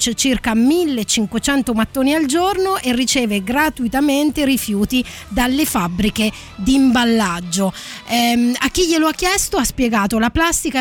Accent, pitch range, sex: native, 215-285 Hz, female